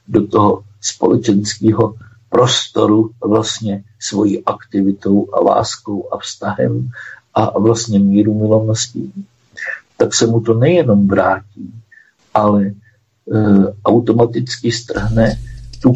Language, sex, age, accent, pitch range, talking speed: Czech, male, 50-69, native, 105-115 Hz, 100 wpm